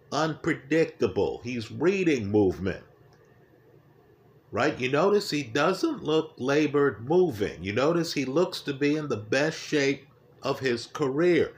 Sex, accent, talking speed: male, American, 130 wpm